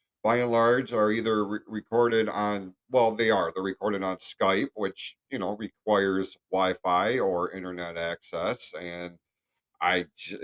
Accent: American